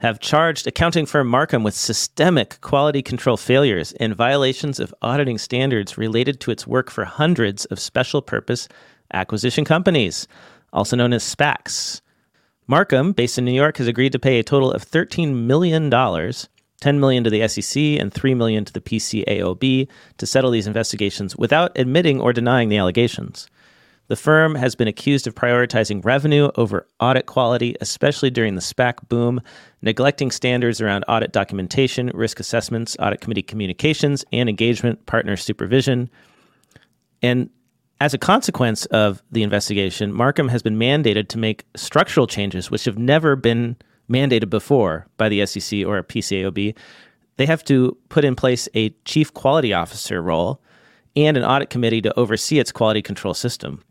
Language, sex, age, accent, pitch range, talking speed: English, male, 40-59, American, 110-140 Hz, 155 wpm